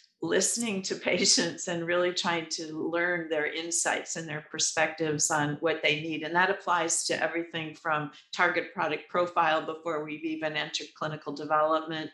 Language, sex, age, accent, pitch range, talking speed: English, female, 50-69, American, 150-175 Hz, 160 wpm